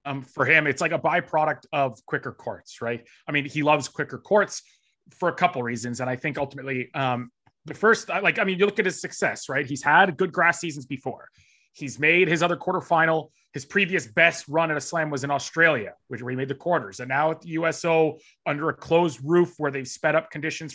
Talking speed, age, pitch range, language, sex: 225 wpm, 30-49, 150-200 Hz, English, male